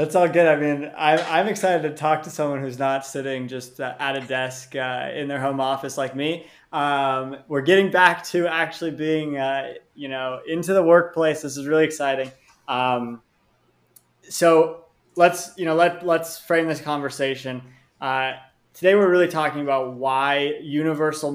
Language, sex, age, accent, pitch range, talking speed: English, male, 20-39, American, 130-165 Hz, 175 wpm